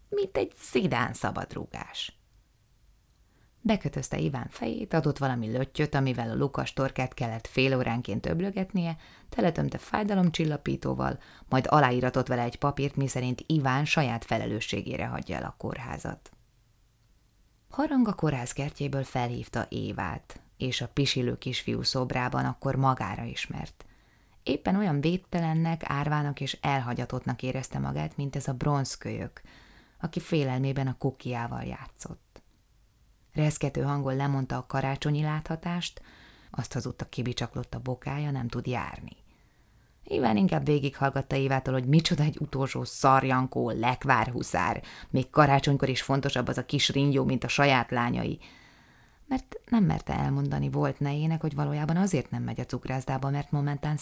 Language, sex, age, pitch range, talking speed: Hungarian, female, 20-39, 125-150 Hz, 130 wpm